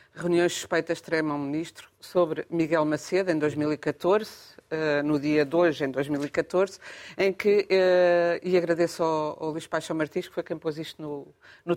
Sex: female